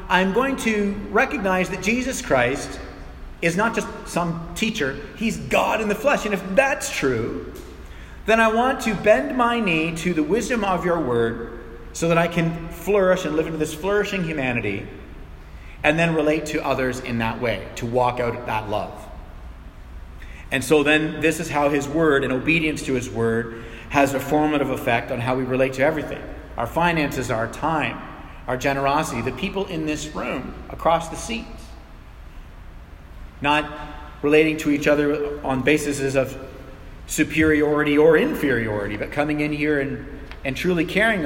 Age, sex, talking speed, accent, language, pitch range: 40-59, male, 165 wpm, American, English, 125-180 Hz